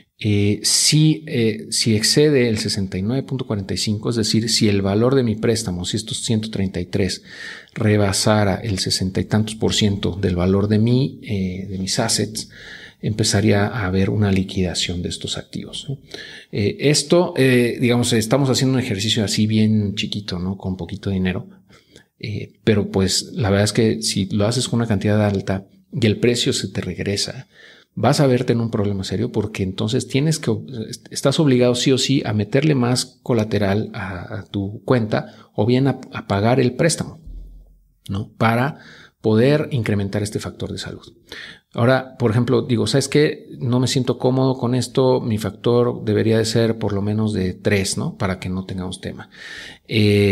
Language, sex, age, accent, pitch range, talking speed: Spanish, male, 50-69, Mexican, 100-125 Hz, 165 wpm